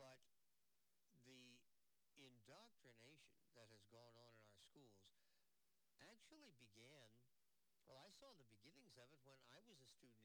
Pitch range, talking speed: 120-155 Hz, 140 wpm